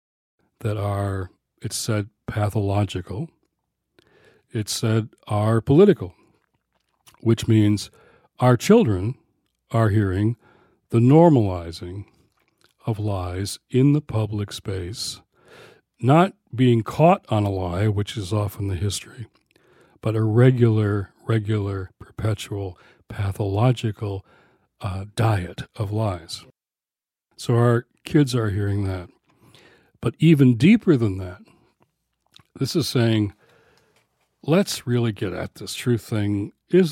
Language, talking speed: English, 105 wpm